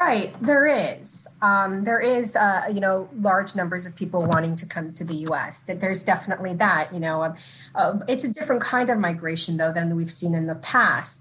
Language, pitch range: English, 165-200 Hz